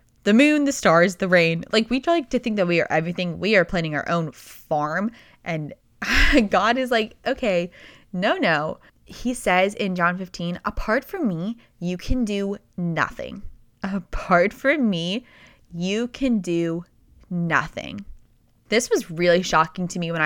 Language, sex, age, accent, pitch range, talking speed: English, female, 20-39, American, 170-235 Hz, 160 wpm